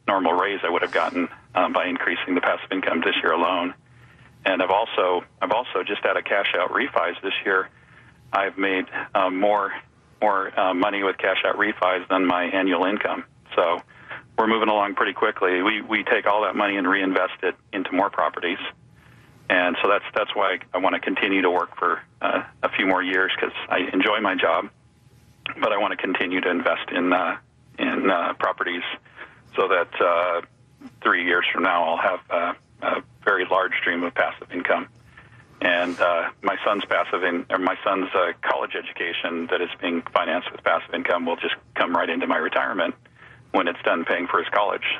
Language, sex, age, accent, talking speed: English, male, 40-59, American, 195 wpm